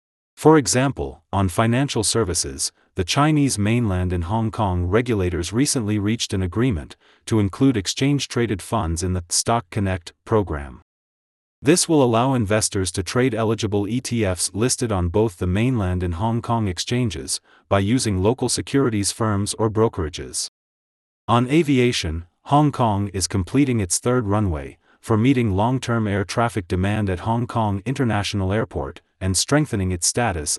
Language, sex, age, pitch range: English, male, 30-49, 95-120 Hz